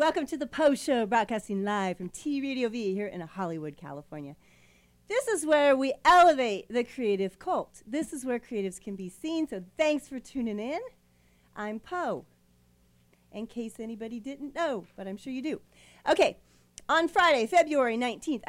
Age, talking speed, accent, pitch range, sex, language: 40-59, 170 wpm, American, 210-310 Hz, female, English